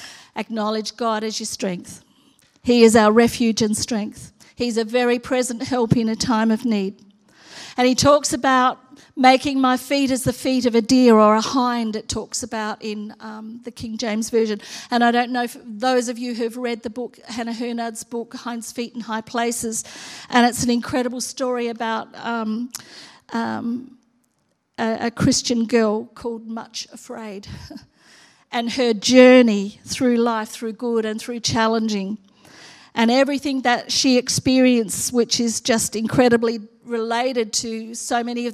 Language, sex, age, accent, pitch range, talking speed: English, female, 40-59, Australian, 225-245 Hz, 165 wpm